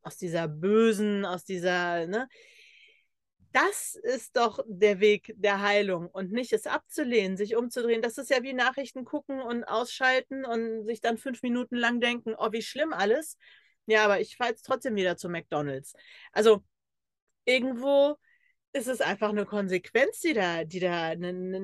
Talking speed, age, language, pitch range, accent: 165 wpm, 40-59, German, 200-265 Hz, German